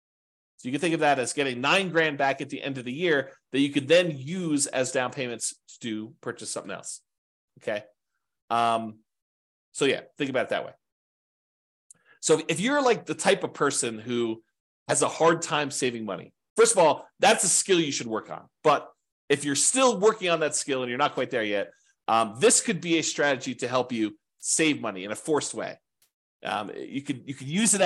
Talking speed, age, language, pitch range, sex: 210 wpm, 30-49, English, 115-165 Hz, male